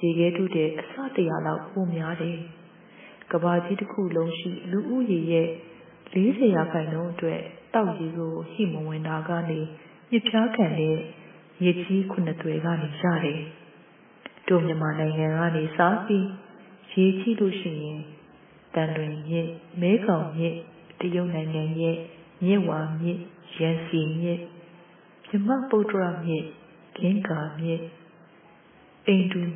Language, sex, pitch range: English, female, 165-190 Hz